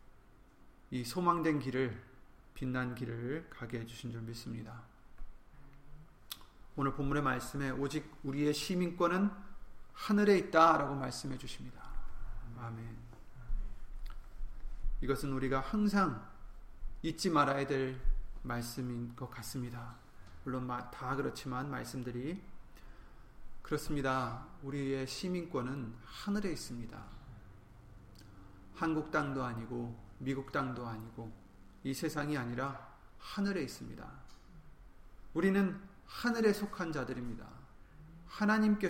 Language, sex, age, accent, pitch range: Korean, male, 40-59, native, 115-155 Hz